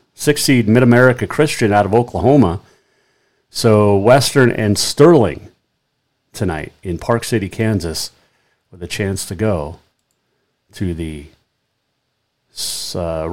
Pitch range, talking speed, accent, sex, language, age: 105-130 Hz, 105 wpm, American, male, English, 40-59